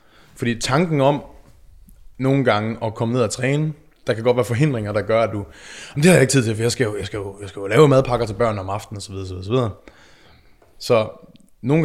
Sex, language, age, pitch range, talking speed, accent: male, Danish, 20-39, 110-135 Hz, 260 wpm, native